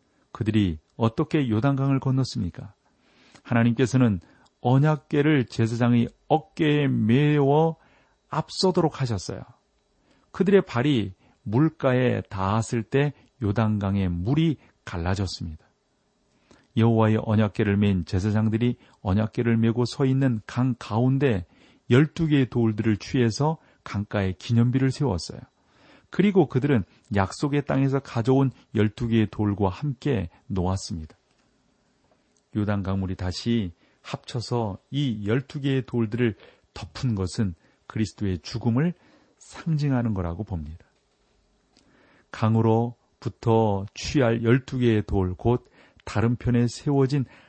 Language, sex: Korean, male